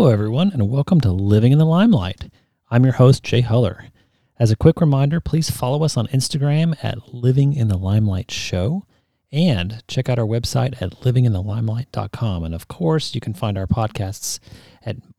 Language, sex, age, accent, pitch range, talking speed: English, male, 40-59, American, 105-130 Hz, 180 wpm